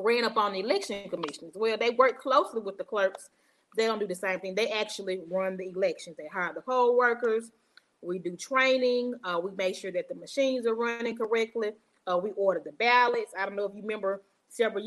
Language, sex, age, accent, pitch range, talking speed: English, female, 30-49, American, 190-245 Hz, 220 wpm